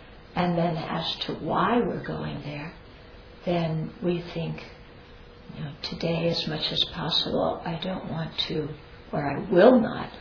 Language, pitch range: English, 155-175 Hz